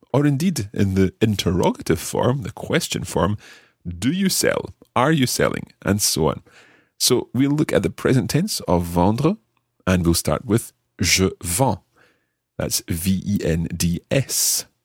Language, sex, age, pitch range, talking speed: English, male, 30-49, 90-125 Hz, 140 wpm